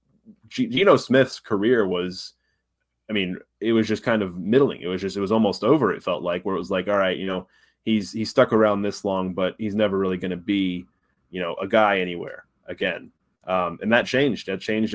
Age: 20-39